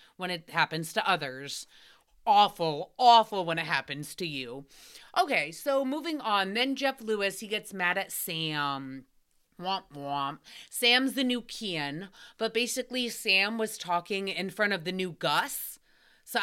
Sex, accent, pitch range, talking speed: female, American, 180-240 Hz, 155 wpm